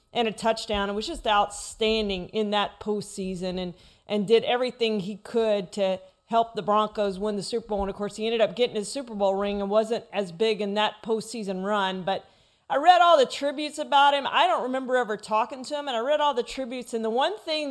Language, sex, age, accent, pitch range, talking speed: English, female, 40-59, American, 200-235 Hz, 230 wpm